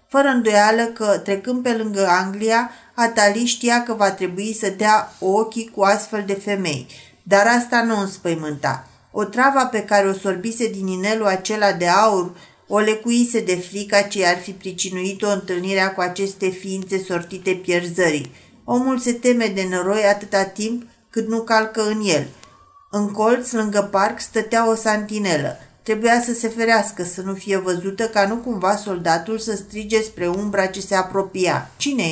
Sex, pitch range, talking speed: female, 195-225 Hz, 165 wpm